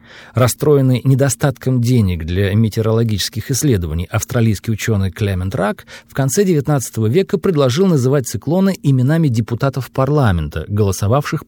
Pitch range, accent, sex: 105-150 Hz, native, male